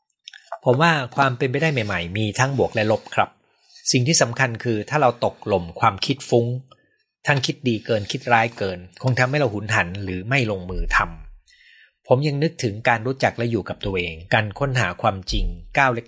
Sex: male